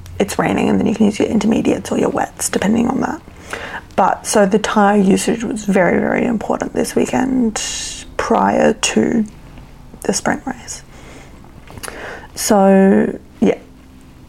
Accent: Australian